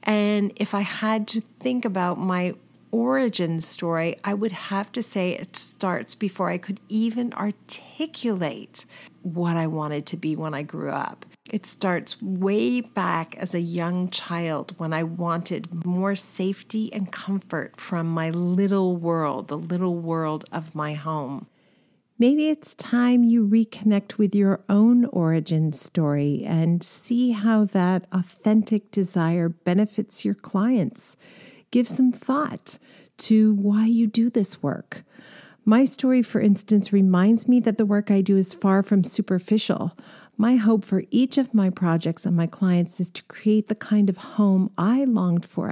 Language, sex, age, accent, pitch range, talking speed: English, female, 40-59, American, 170-220 Hz, 155 wpm